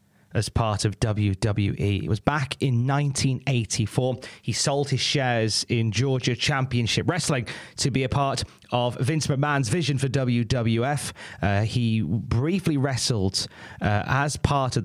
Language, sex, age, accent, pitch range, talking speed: English, male, 30-49, British, 115-145 Hz, 140 wpm